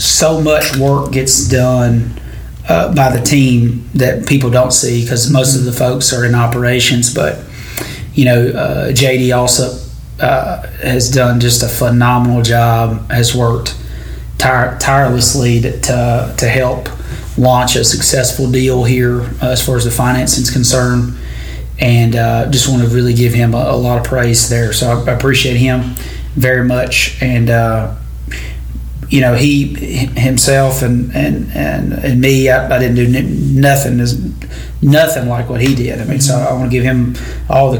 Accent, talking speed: American, 170 wpm